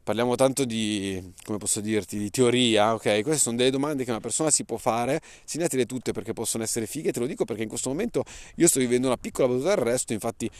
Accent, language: native, Italian